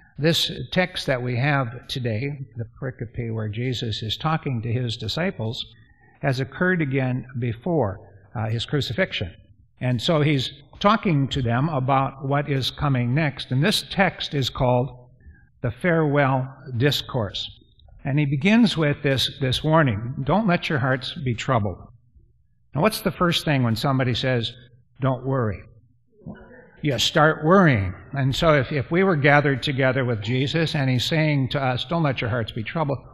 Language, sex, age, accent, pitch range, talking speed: English, male, 50-69, American, 115-145 Hz, 160 wpm